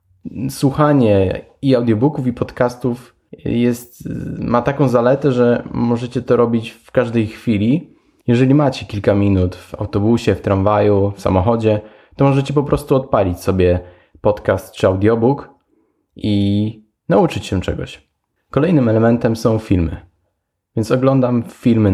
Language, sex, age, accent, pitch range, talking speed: Polish, male, 10-29, native, 95-120 Hz, 125 wpm